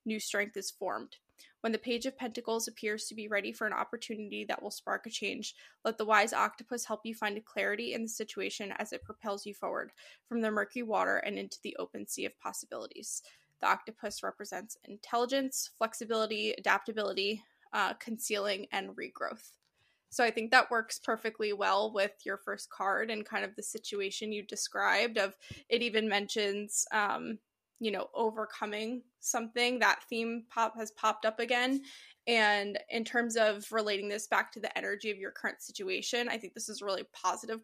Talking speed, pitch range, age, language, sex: 180 wpm, 205-235 Hz, 20-39, English, female